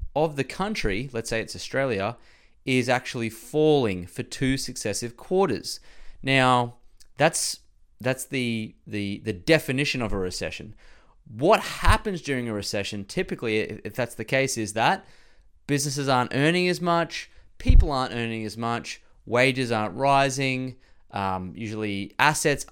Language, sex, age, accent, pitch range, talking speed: English, male, 20-39, Australian, 100-135 Hz, 135 wpm